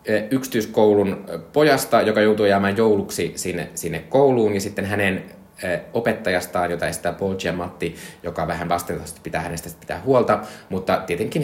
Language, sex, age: Finnish, male, 20-39